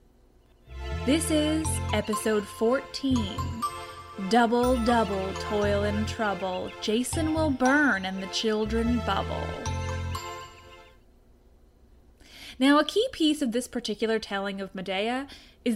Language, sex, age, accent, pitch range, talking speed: English, female, 10-29, American, 190-260 Hz, 105 wpm